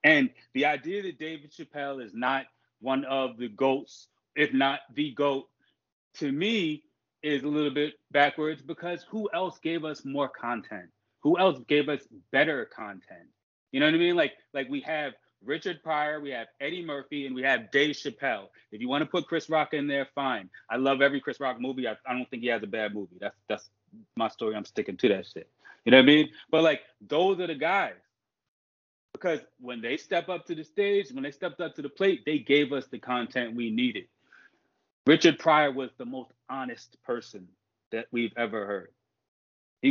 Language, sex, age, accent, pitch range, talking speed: English, male, 30-49, American, 130-170 Hz, 205 wpm